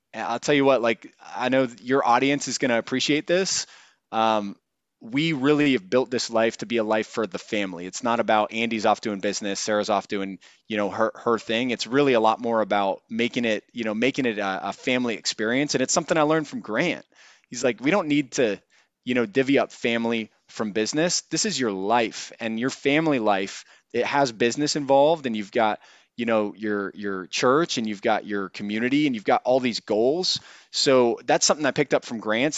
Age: 20-39